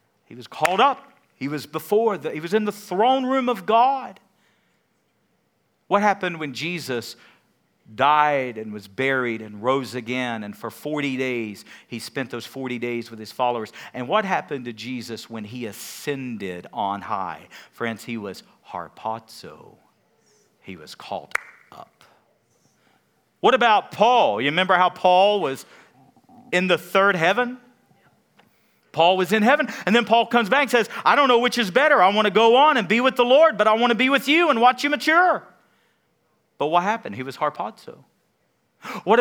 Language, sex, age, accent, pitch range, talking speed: English, male, 50-69, American, 150-250 Hz, 175 wpm